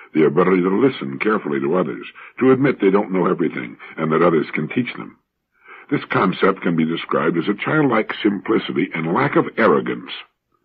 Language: English